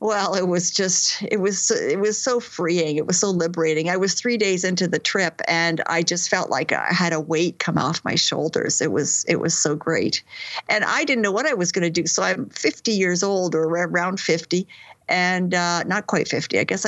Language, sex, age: English, female, 50-69